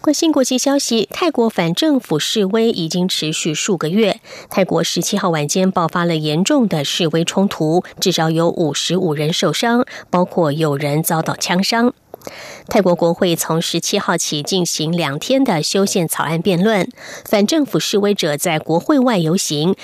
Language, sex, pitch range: German, female, 165-210 Hz